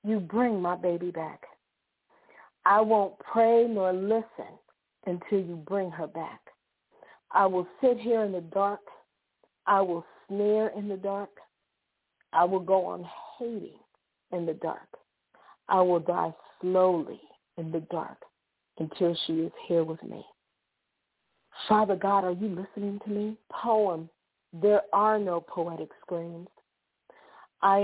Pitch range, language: 175-210 Hz, English